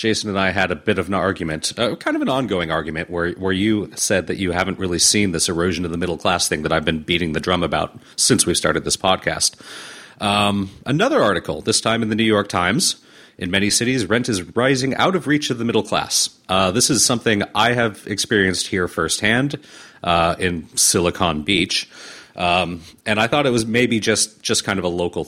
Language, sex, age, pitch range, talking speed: English, male, 40-59, 85-110 Hz, 220 wpm